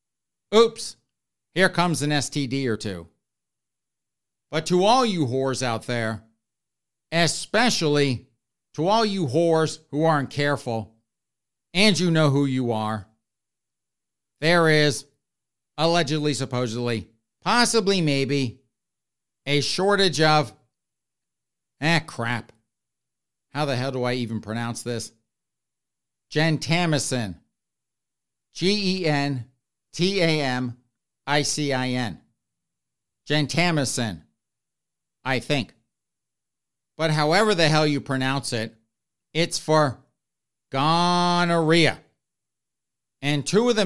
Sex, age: male, 50-69